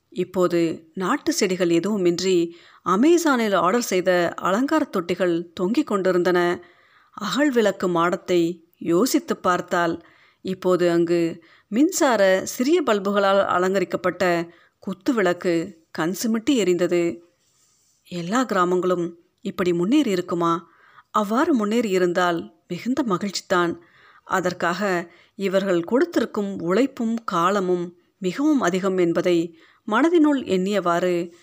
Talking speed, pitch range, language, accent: 80 wpm, 175-225 Hz, Tamil, native